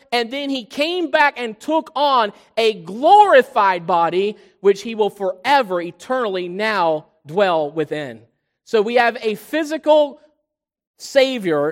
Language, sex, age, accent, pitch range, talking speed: English, male, 40-59, American, 195-235 Hz, 130 wpm